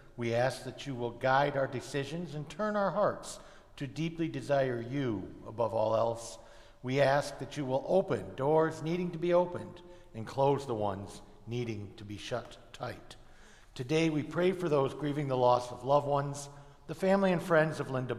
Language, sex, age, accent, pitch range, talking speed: English, male, 60-79, American, 130-155 Hz, 185 wpm